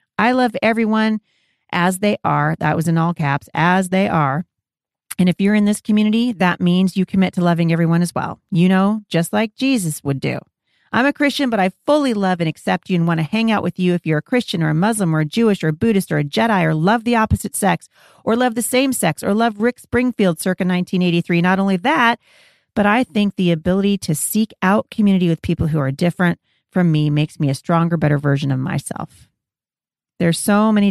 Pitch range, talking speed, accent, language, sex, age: 160-205 Hz, 220 wpm, American, English, female, 40-59